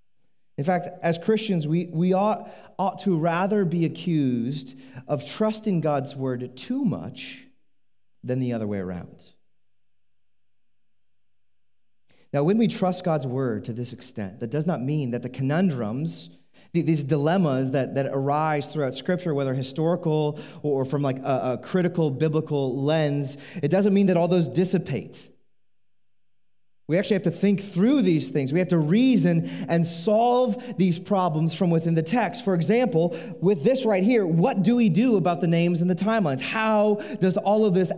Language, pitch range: English, 135-195 Hz